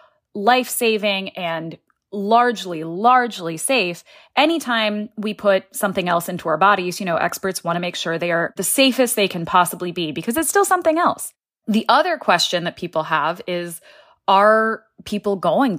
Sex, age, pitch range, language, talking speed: female, 20-39, 165-225 Hz, English, 165 wpm